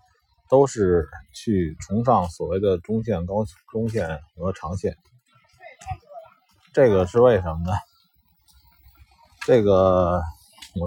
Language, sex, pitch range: Chinese, male, 85-125 Hz